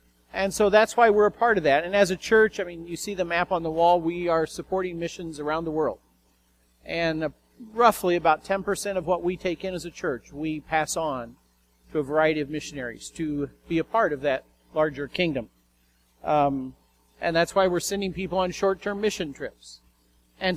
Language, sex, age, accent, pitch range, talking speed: English, male, 50-69, American, 135-185 Hz, 200 wpm